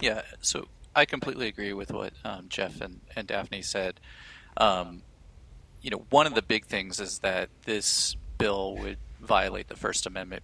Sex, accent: male, American